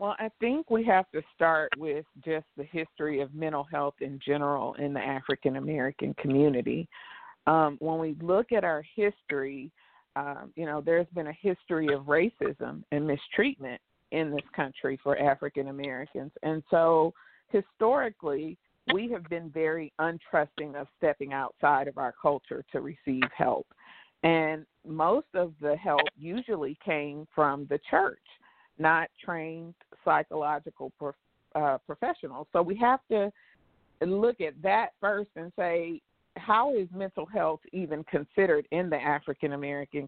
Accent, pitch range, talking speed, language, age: American, 145-175 Hz, 140 wpm, English, 50-69